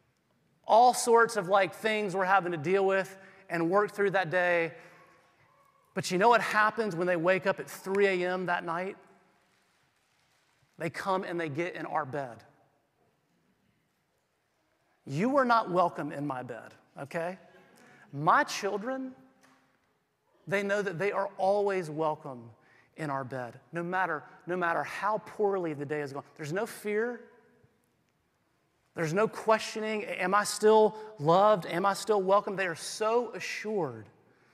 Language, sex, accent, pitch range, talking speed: English, male, American, 165-215 Hz, 150 wpm